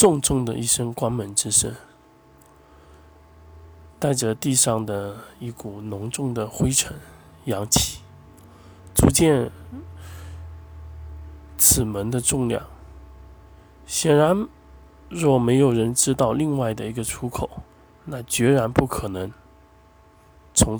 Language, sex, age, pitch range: Chinese, male, 20-39, 85-140 Hz